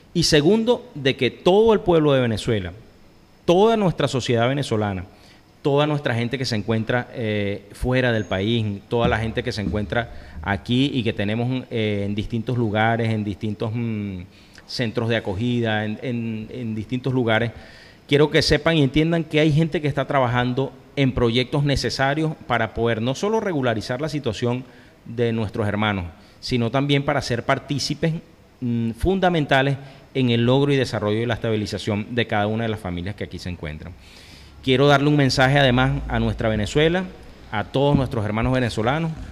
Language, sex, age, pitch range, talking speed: Spanish, male, 30-49, 110-140 Hz, 170 wpm